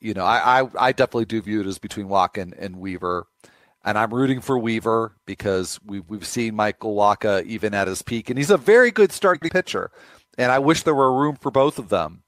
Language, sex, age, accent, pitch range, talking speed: English, male, 40-59, American, 100-125 Hz, 230 wpm